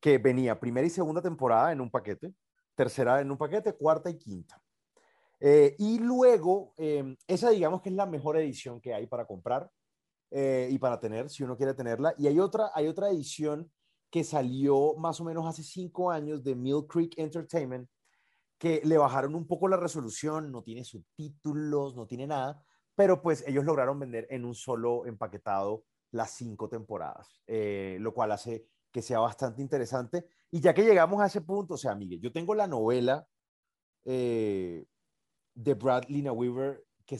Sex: male